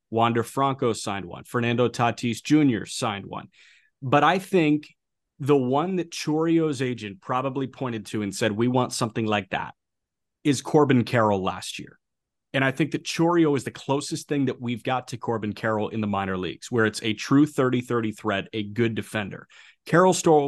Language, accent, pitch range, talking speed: English, American, 110-150 Hz, 180 wpm